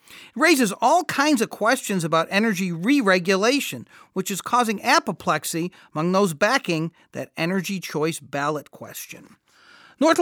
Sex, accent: male, American